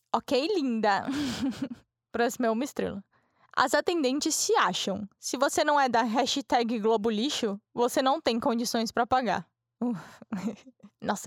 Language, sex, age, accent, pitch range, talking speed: Portuguese, female, 10-29, Brazilian, 215-275 Hz, 140 wpm